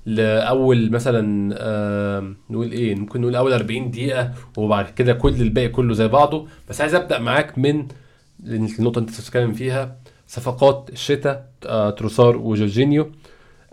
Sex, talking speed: male, 130 wpm